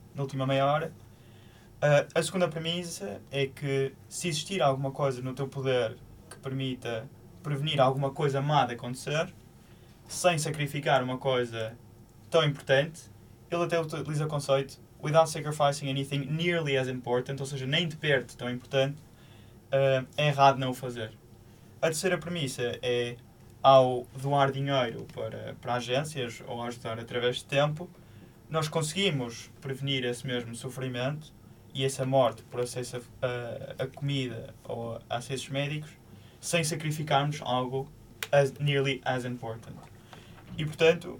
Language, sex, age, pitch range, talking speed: Portuguese, male, 20-39, 120-145 Hz, 145 wpm